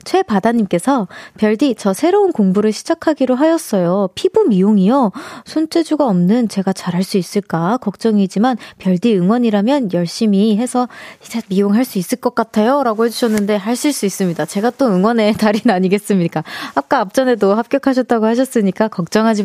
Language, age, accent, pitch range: Korean, 20-39, native, 200-285 Hz